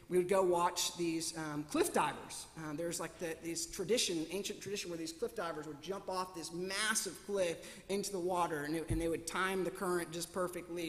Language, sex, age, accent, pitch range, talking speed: English, male, 30-49, American, 170-210 Hz, 210 wpm